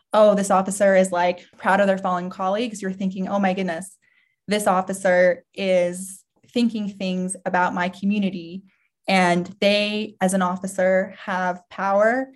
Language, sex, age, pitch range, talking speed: English, female, 20-39, 185-205 Hz, 145 wpm